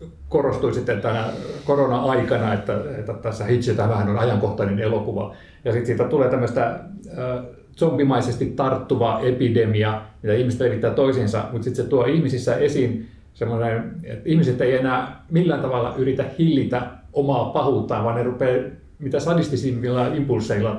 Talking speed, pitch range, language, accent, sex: 135 wpm, 115-135 Hz, Finnish, native, male